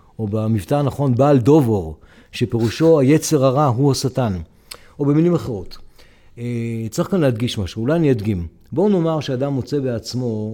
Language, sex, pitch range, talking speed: Hebrew, male, 115-160 Hz, 150 wpm